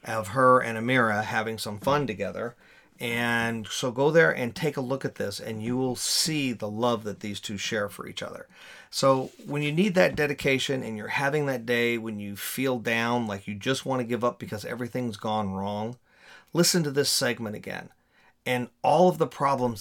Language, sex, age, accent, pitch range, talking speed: English, male, 40-59, American, 110-135 Hz, 205 wpm